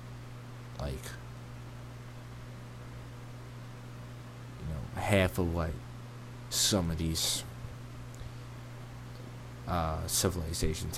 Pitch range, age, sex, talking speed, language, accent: 90-120 Hz, 20-39, male, 60 wpm, English, American